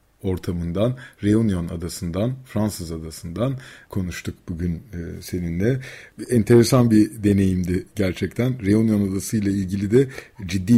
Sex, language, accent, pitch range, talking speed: male, Turkish, native, 90-115 Hz, 100 wpm